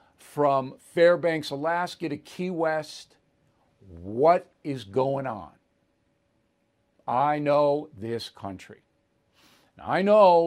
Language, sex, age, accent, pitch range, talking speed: English, male, 60-79, American, 145-185 Hz, 90 wpm